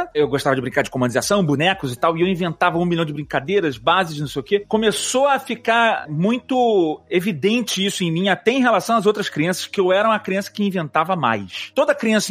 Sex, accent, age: male, Brazilian, 30-49